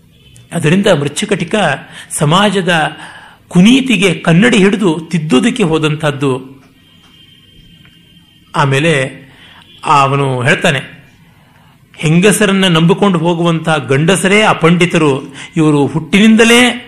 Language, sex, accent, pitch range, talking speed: Kannada, male, native, 140-185 Hz, 70 wpm